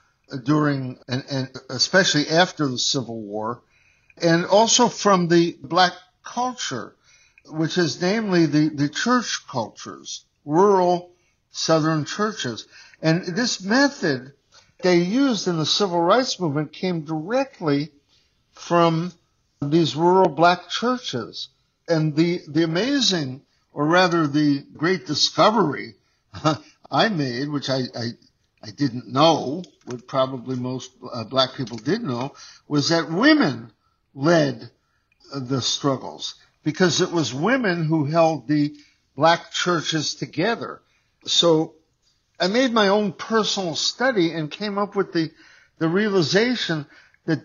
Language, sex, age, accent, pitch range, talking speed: English, male, 60-79, American, 140-185 Hz, 120 wpm